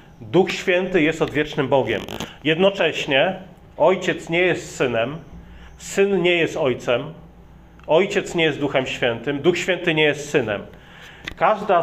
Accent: native